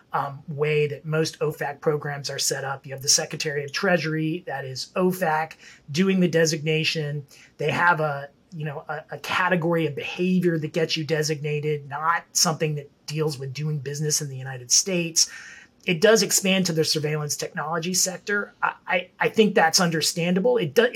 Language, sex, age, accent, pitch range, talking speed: English, male, 30-49, American, 145-180 Hz, 180 wpm